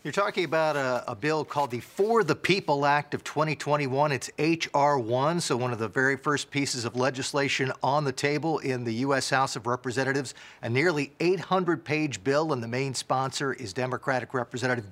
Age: 50-69